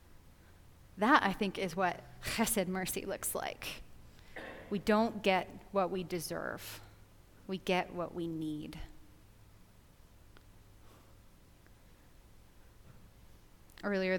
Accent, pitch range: American, 150-190 Hz